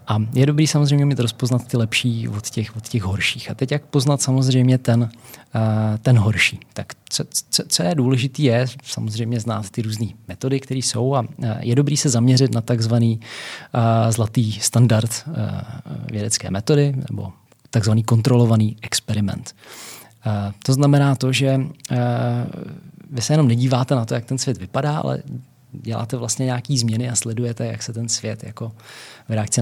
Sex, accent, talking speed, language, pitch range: male, native, 160 wpm, Czech, 105-125 Hz